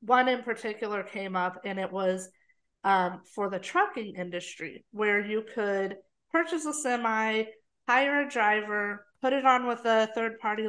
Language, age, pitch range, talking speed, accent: English, 30-49, 195-240 Hz, 155 wpm, American